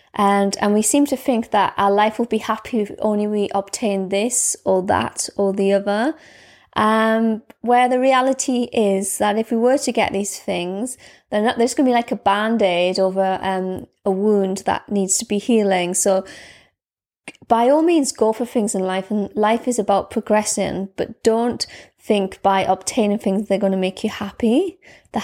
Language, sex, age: English, female, 20-39